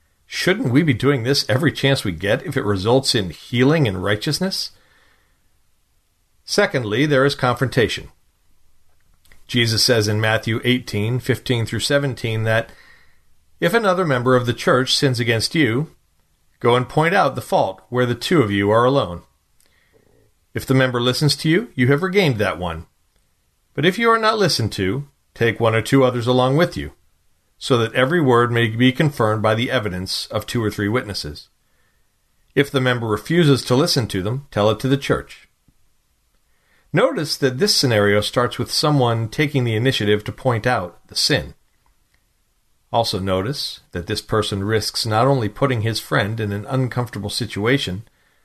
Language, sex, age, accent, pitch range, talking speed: English, male, 40-59, American, 105-135 Hz, 165 wpm